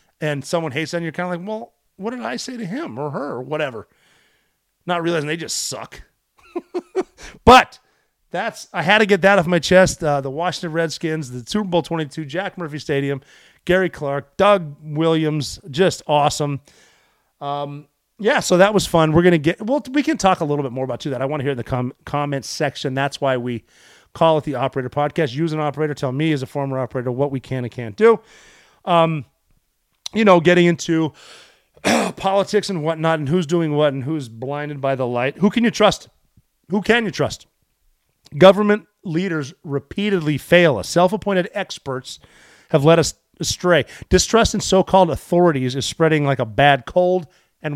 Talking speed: 190 wpm